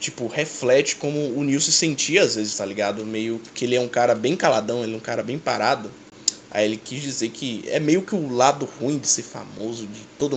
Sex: male